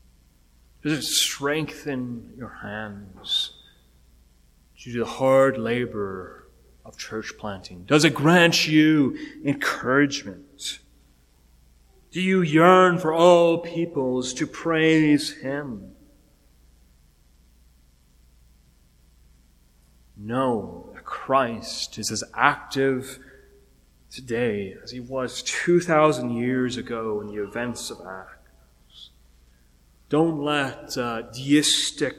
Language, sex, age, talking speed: English, male, 30-49, 95 wpm